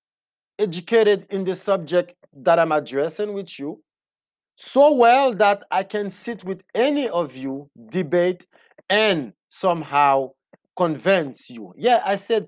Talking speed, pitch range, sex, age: 130 wpm, 165-225 Hz, male, 40-59